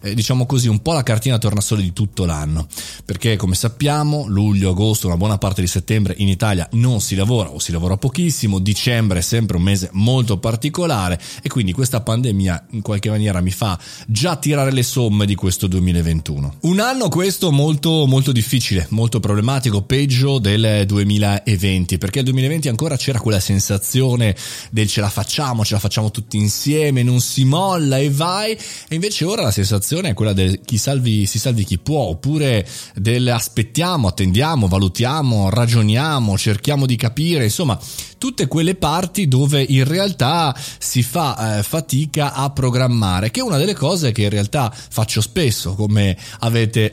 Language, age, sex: Italian, 20-39, male